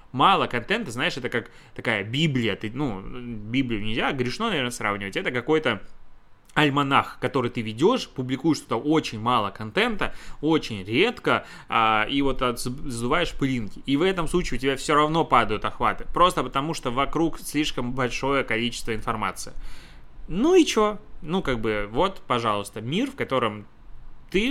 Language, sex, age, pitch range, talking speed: Russian, male, 20-39, 115-155 Hz, 145 wpm